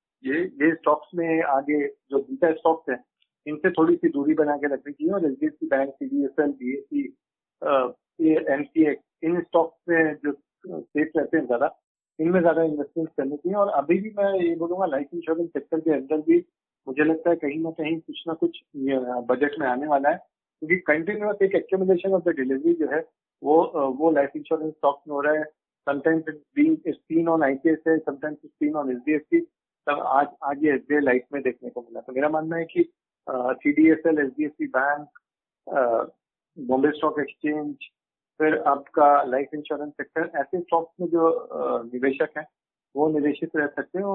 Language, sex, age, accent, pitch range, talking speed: Hindi, male, 50-69, native, 140-165 Hz, 165 wpm